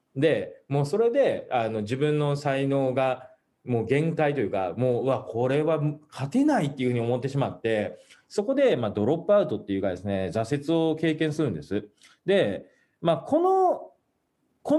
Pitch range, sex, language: 115-180 Hz, male, Japanese